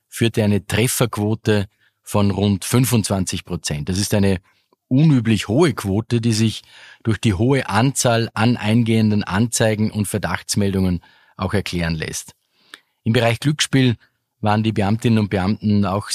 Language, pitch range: German, 100-120 Hz